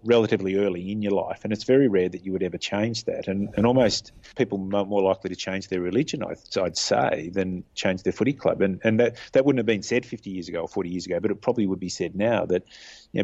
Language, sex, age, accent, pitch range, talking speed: English, male, 30-49, Australian, 90-110 Hz, 260 wpm